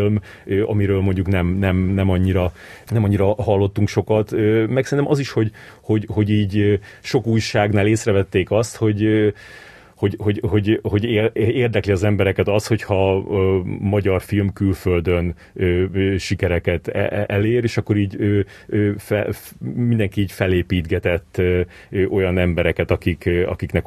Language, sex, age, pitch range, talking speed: Hungarian, male, 30-49, 95-110 Hz, 125 wpm